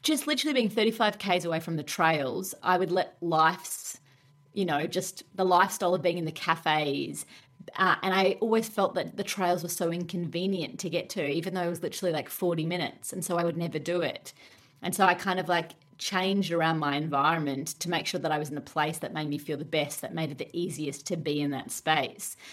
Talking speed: 230 wpm